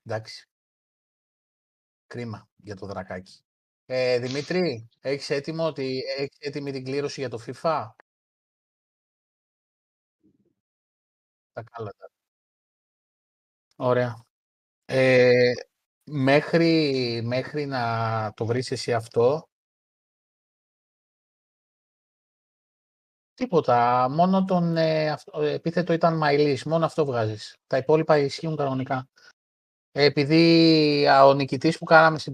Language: Greek